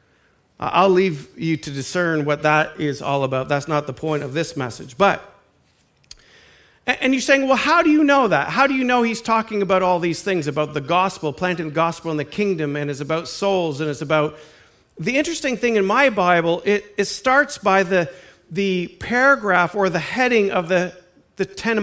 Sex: male